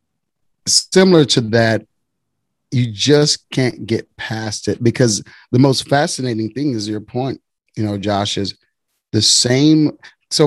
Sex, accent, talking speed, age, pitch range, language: male, American, 140 wpm, 30-49, 115-155 Hz, English